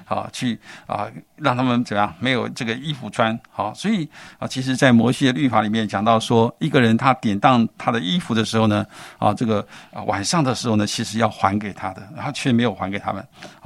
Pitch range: 110-135 Hz